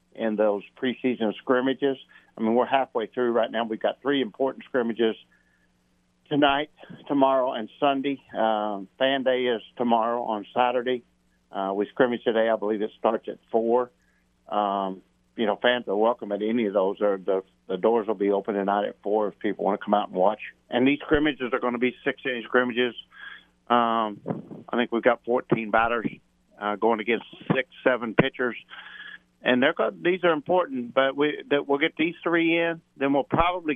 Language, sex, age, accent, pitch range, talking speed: English, male, 50-69, American, 110-140 Hz, 180 wpm